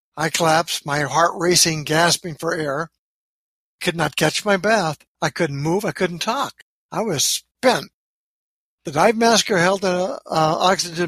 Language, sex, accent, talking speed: English, male, American, 150 wpm